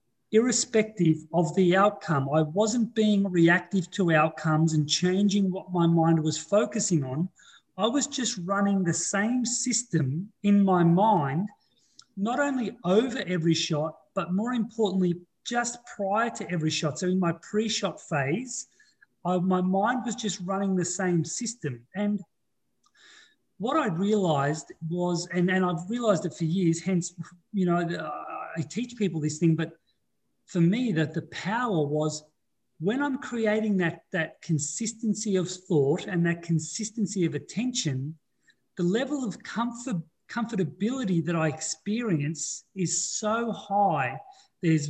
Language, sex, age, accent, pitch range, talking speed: English, male, 40-59, Australian, 165-215 Hz, 140 wpm